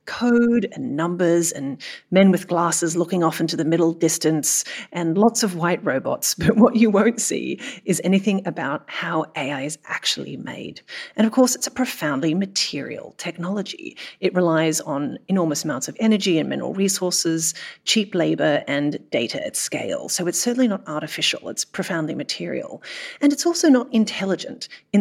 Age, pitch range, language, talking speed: 40-59, 165-225 Hz, English, 165 wpm